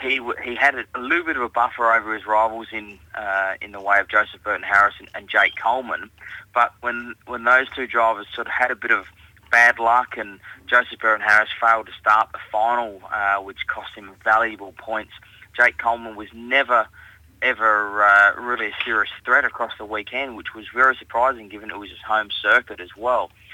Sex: male